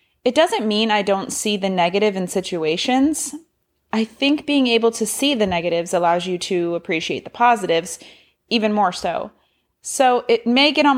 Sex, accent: female, American